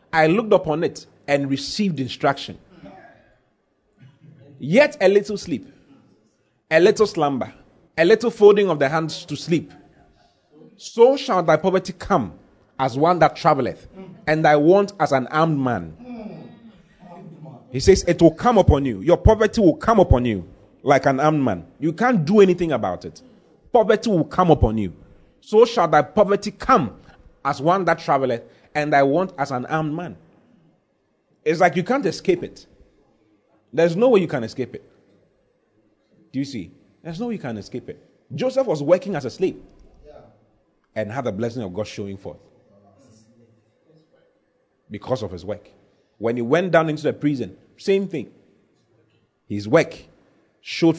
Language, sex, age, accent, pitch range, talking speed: English, male, 30-49, Nigerian, 120-185 Hz, 160 wpm